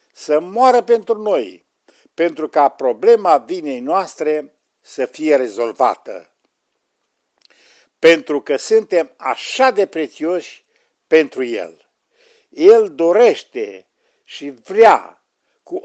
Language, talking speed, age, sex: Romanian, 95 wpm, 60-79, male